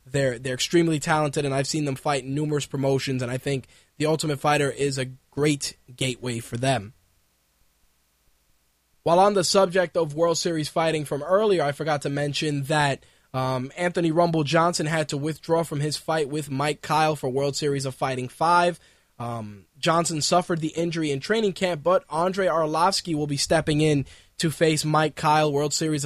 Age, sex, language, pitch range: 20-39, male, English, 135-160 Hz